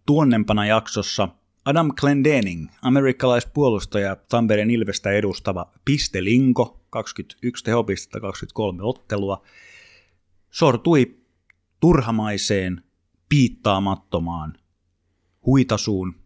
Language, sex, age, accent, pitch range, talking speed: Finnish, male, 30-49, native, 95-115 Hz, 65 wpm